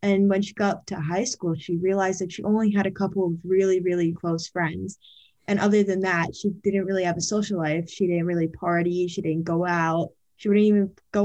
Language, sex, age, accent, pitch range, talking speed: English, female, 10-29, American, 170-200 Hz, 235 wpm